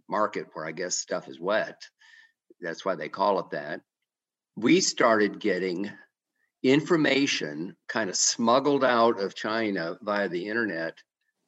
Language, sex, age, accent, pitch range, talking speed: English, male, 50-69, American, 100-125 Hz, 135 wpm